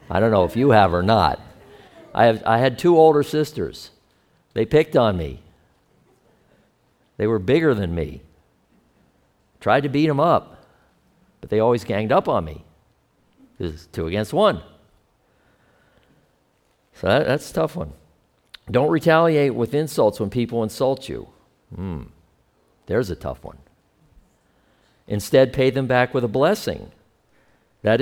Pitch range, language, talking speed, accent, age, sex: 95-140 Hz, English, 145 wpm, American, 50-69, male